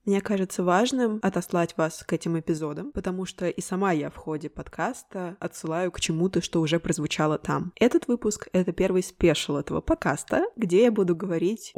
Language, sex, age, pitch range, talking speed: Russian, female, 20-39, 160-205 Hz, 180 wpm